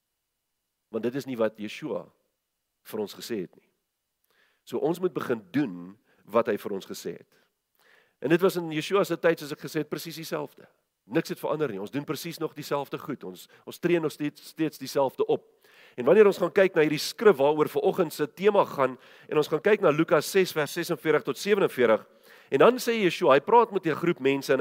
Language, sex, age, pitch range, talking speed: English, male, 50-69, 140-195 Hz, 215 wpm